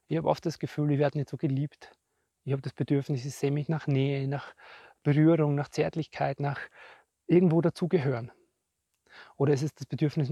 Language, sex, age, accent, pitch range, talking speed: German, male, 30-49, German, 135-155 Hz, 185 wpm